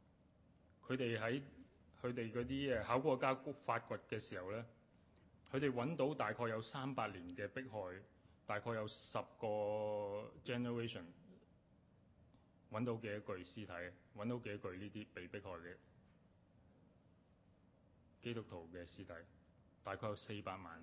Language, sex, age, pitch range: Chinese, male, 30-49, 90-115 Hz